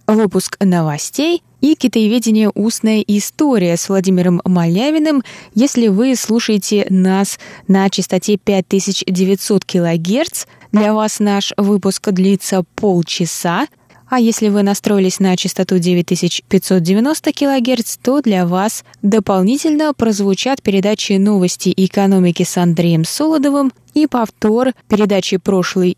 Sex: female